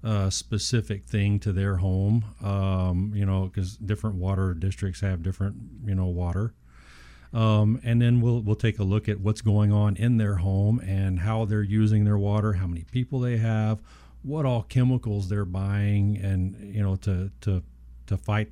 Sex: male